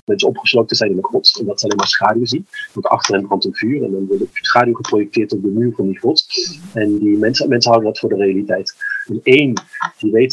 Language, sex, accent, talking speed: Dutch, male, Dutch, 255 wpm